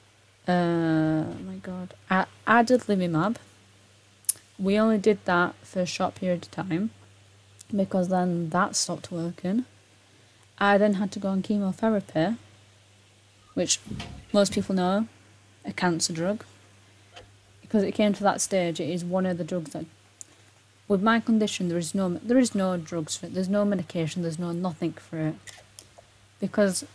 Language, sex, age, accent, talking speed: English, female, 30-49, British, 155 wpm